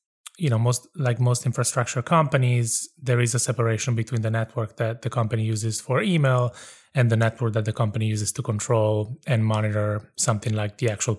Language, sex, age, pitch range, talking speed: English, male, 20-39, 115-130 Hz, 190 wpm